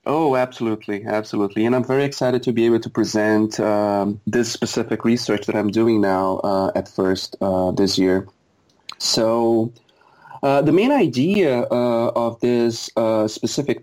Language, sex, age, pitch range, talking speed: English, male, 30-49, 105-125 Hz, 155 wpm